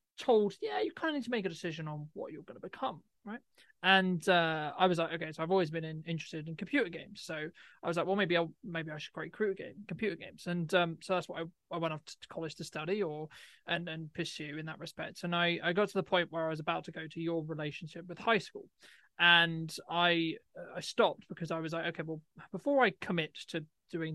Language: English